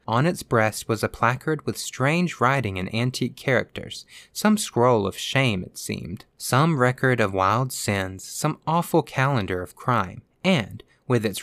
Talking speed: 165 wpm